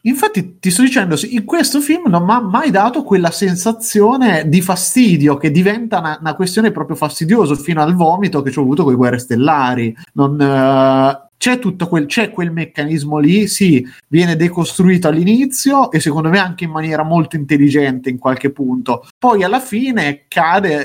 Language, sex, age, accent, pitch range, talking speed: Italian, male, 30-49, native, 140-175 Hz, 180 wpm